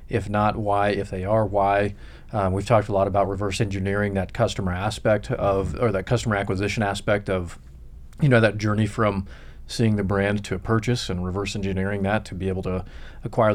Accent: American